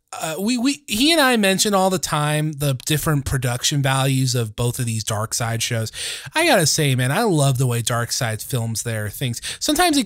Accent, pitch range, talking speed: American, 125-180 Hz, 215 wpm